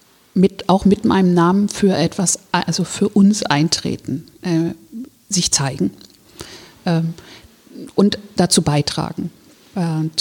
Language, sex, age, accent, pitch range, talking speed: German, female, 50-69, German, 175-205 Hz, 110 wpm